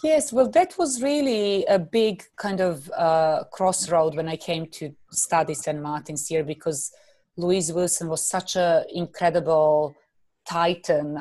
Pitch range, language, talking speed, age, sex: 155-185 Hz, English, 145 wpm, 30-49, female